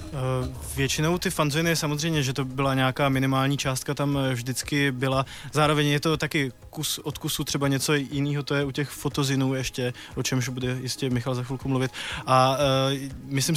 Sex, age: male, 20-39